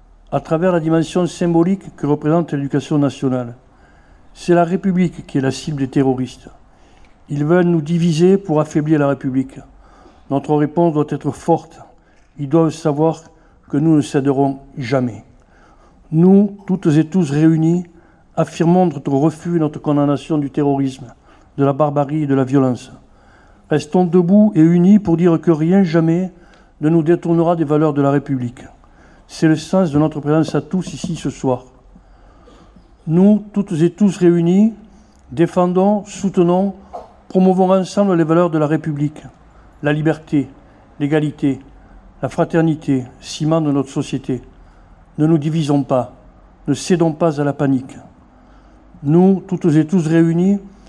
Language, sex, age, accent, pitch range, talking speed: French, male, 60-79, French, 140-175 Hz, 145 wpm